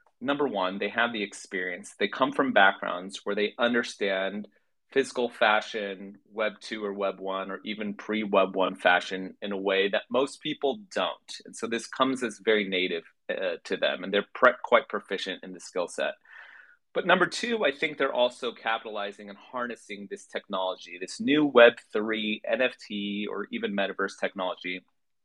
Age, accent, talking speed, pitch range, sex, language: 30-49, American, 170 wpm, 100-120 Hz, male, English